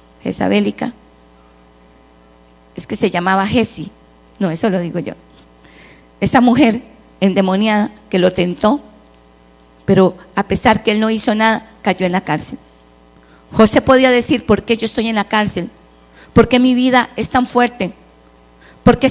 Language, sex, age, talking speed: English, female, 40-59, 155 wpm